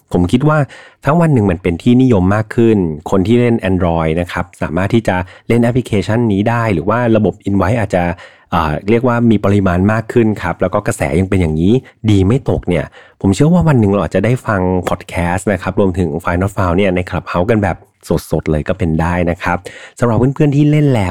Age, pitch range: 30-49, 90-115 Hz